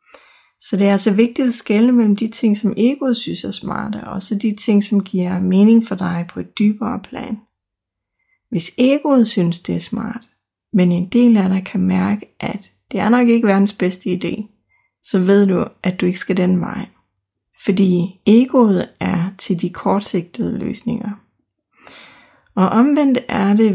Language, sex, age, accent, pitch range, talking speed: Danish, female, 30-49, native, 185-230 Hz, 175 wpm